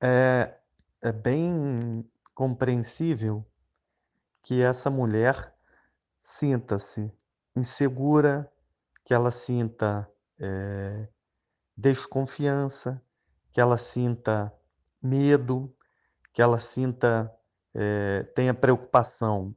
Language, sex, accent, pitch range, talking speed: Portuguese, male, Brazilian, 105-130 Hz, 75 wpm